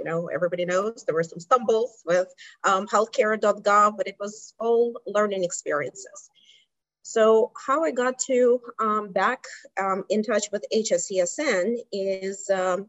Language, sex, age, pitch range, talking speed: English, female, 30-49, 185-240 Hz, 145 wpm